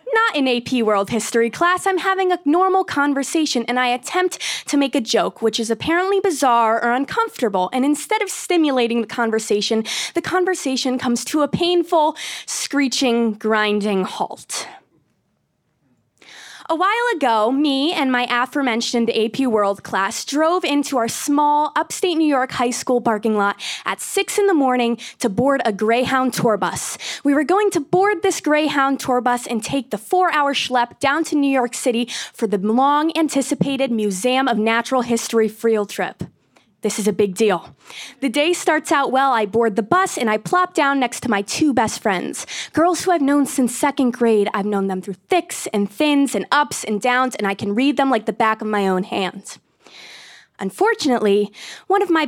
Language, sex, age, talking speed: English, female, 20-39, 180 wpm